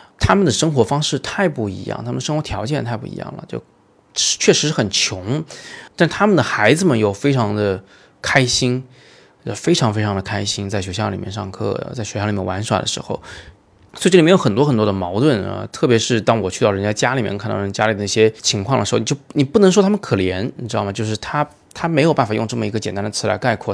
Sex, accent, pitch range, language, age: male, native, 100-125 Hz, Chinese, 20-39